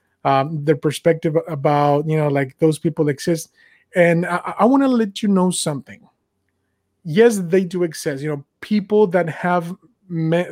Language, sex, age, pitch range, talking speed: English, male, 30-49, 150-180 Hz, 165 wpm